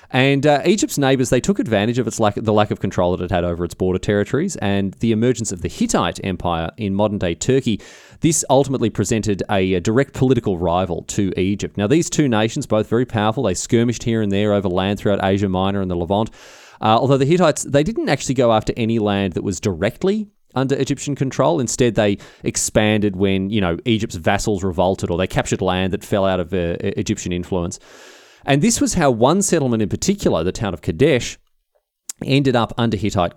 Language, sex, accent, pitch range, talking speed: English, male, Australian, 95-130 Hz, 205 wpm